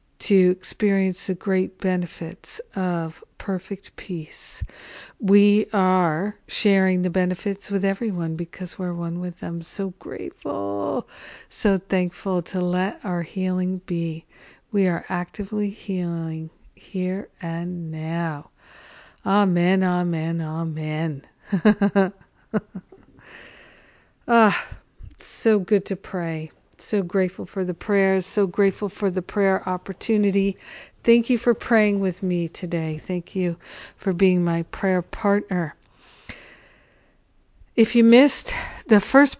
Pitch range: 175-200 Hz